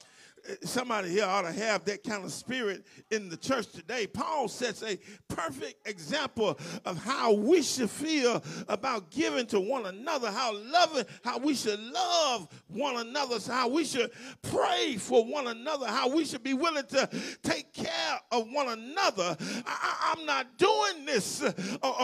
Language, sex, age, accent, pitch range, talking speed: English, male, 40-59, American, 230-295 Hz, 165 wpm